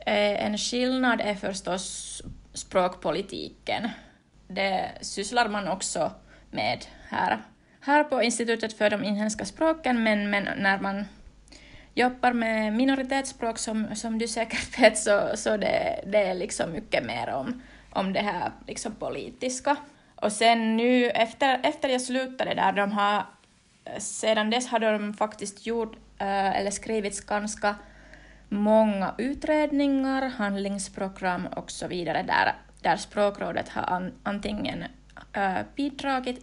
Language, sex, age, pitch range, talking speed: Swedish, female, 20-39, 200-250 Hz, 125 wpm